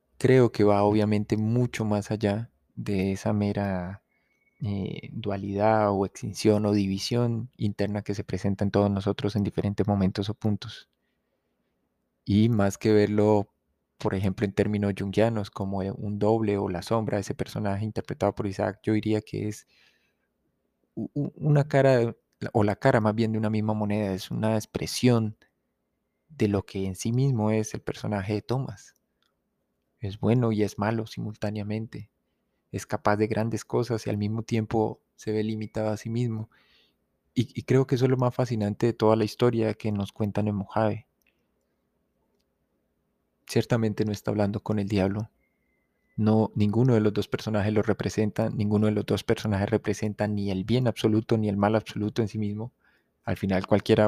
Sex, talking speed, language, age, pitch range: male, 170 wpm, Spanish, 20-39, 100-110 Hz